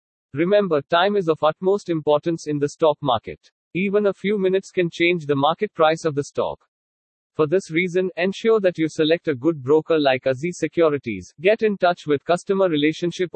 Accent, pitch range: Indian, 145-180 Hz